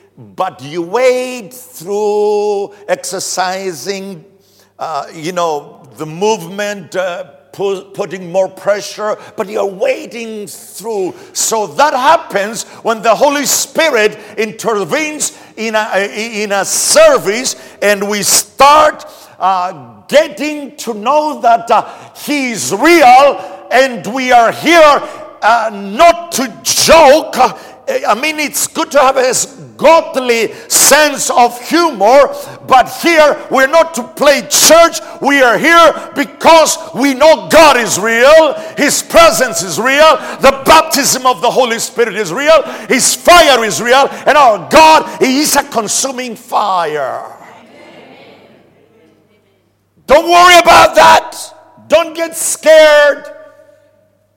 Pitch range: 205-305 Hz